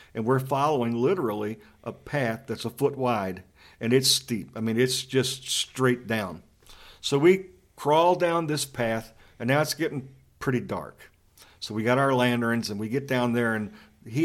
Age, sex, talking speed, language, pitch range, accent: 50-69, male, 180 wpm, English, 110-135 Hz, American